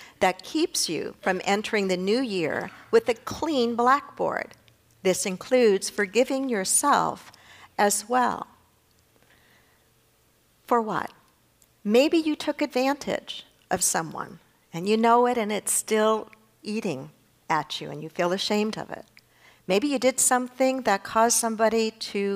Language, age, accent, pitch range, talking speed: English, 50-69, American, 190-235 Hz, 135 wpm